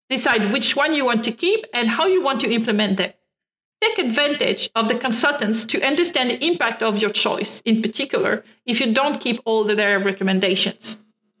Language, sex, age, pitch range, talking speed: English, female, 40-59, 220-290 Hz, 185 wpm